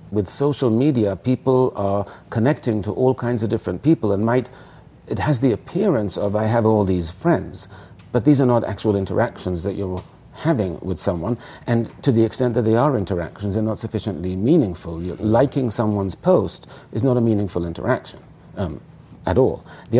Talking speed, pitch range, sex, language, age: 175 wpm, 100-125 Hz, male, English, 50-69